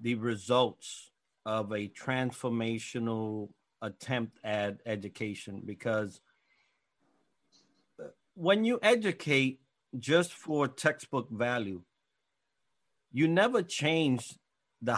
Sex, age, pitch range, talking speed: male, 50-69, 120-150 Hz, 80 wpm